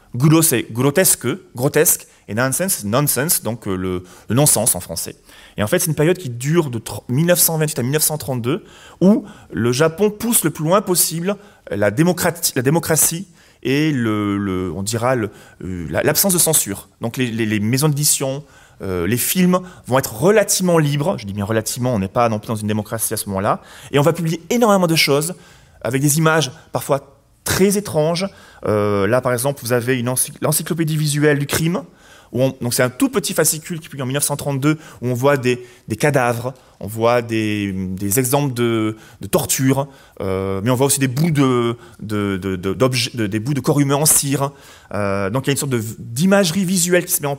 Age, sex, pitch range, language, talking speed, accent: 30-49, male, 115-165 Hz, French, 200 wpm, French